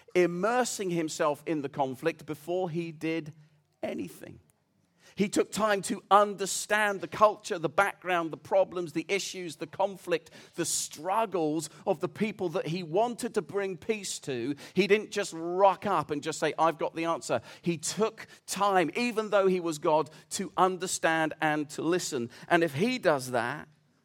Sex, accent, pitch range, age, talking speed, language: male, British, 145-185 Hz, 40-59, 165 wpm, English